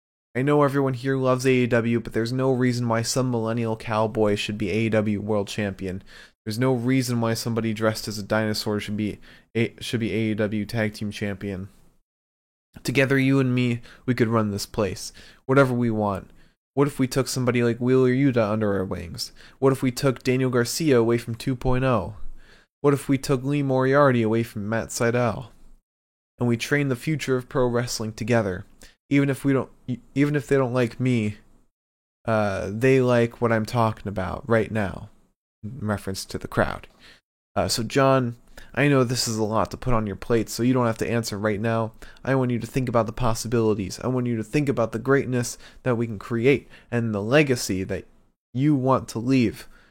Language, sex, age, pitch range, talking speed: English, male, 20-39, 105-130 Hz, 195 wpm